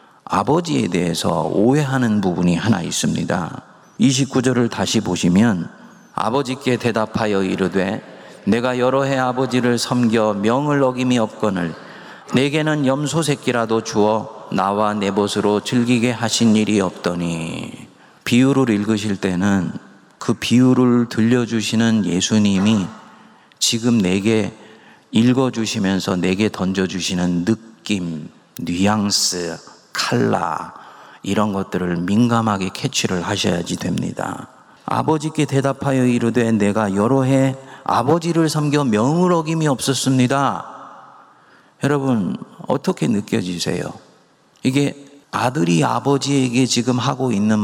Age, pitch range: 40-59, 100-135 Hz